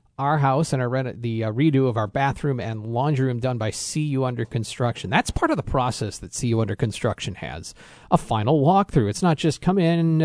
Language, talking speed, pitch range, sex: English, 210 wpm, 115-150 Hz, male